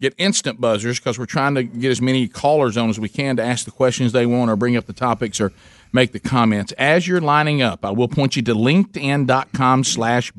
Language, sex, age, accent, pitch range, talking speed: English, male, 50-69, American, 115-145 Hz, 235 wpm